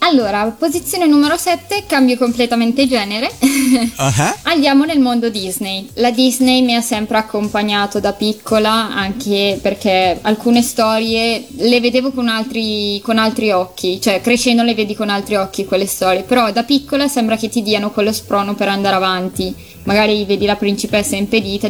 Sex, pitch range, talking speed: female, 205-245 Hz, 155 wpm